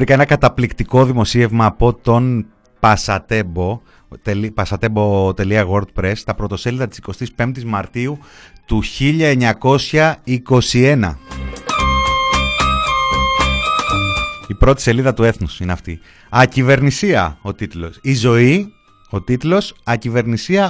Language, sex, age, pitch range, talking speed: Greek, male, 30-49, 100-135 Hz, 90 wpm